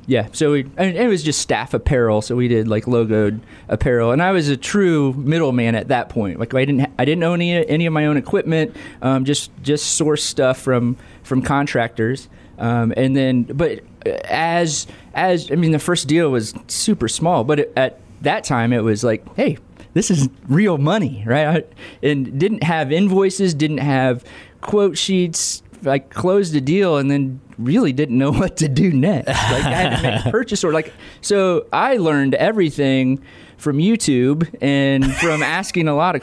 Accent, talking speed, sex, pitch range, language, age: American, 195 wpm, male, 125-170 Hz, English, 20-39